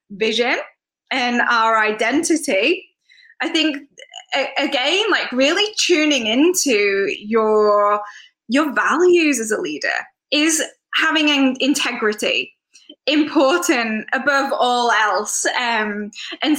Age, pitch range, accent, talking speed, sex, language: 10-29, 235-320 Hz, British, 100 wpm, female, English